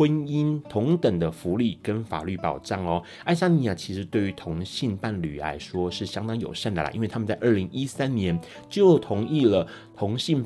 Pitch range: 90-125 Hz